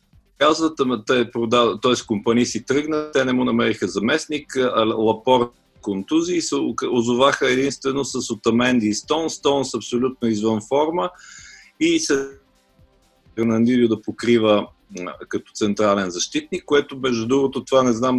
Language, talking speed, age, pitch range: Bulgarian, 130 wpm, 40-59, 105-135 Hz